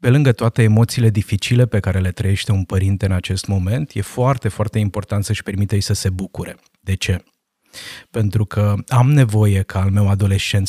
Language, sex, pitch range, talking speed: Romanian, male, 100-120 Hz, 190 wpm